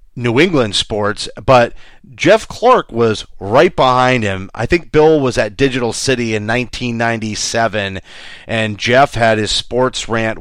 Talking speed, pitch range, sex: 145 wpm, 105-125 Hz, male